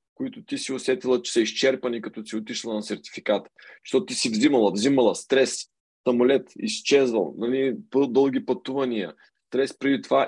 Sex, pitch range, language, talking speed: male, 105-125 Hz, Bulgarian, 150 wpm